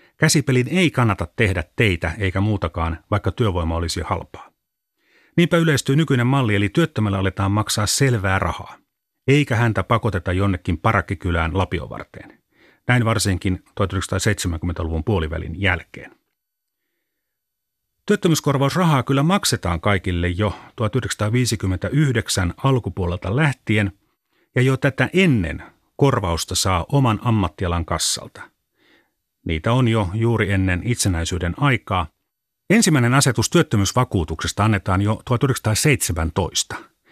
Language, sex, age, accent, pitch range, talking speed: Finnish, male, 30-49, native, 95-130 Hz, 100 wpm